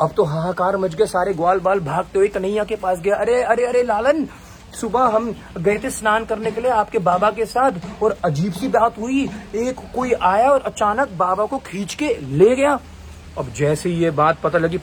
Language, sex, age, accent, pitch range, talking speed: Hindi, male, 30-49, native, 155-225 Hz, 220 wpm